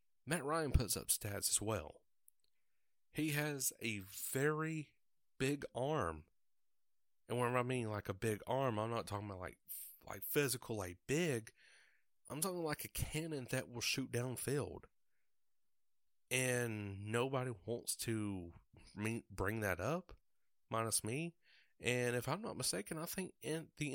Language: English